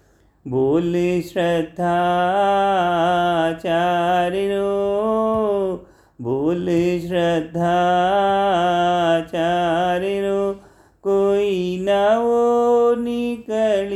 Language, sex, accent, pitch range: Hindi, male, native, 175-200 Hz